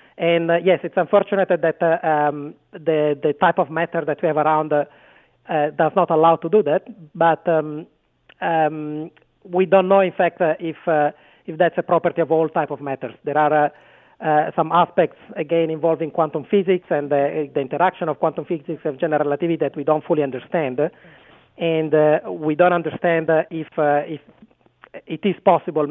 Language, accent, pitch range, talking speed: English, Italian, 150-170 Hz, 190 wpm